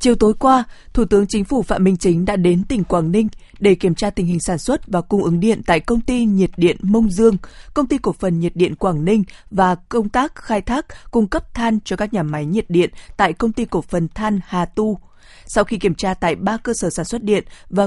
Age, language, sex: 20-39, Vietnamese, female